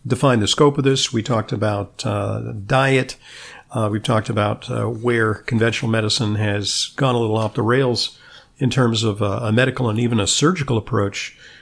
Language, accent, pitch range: English, American, 110-140 Hz